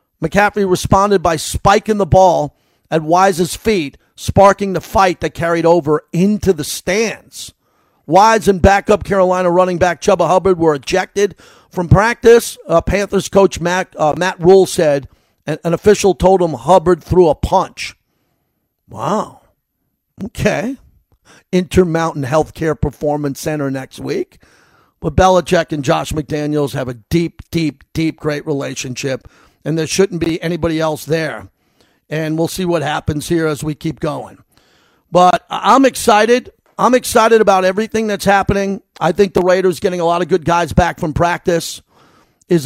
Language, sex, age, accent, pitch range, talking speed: English, male, 50-69, American, 160-195 Hz, 150 wpm